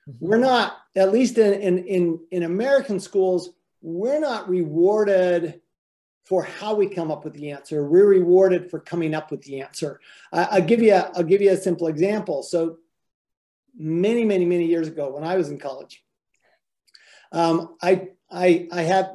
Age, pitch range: 50-69, 160-190 Hz